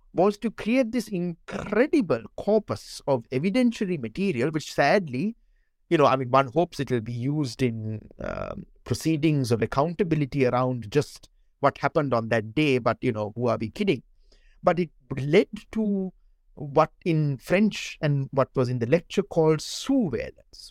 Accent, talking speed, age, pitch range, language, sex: Indian, 160 wpm, 60-79, 130-200 Hz, English, male